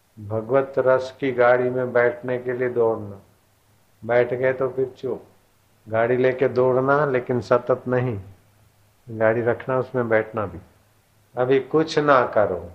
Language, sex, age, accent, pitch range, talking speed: Hindi, male, 50-69, native, 105-125 Hz, 135 wpm